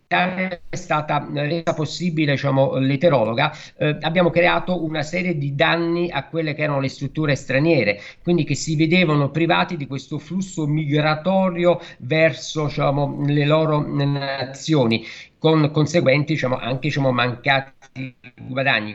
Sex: male